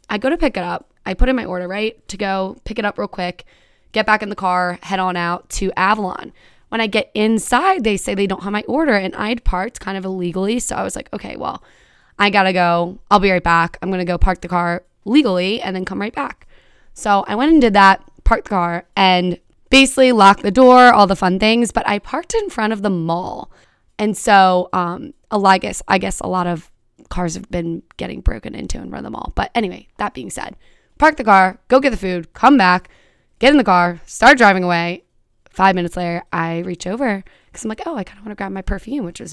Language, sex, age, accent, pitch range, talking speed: English, female, 20-39, American, 180-215 Hz, 245 wpm